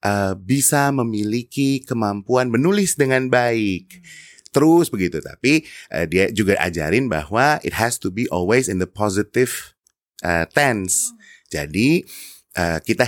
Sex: male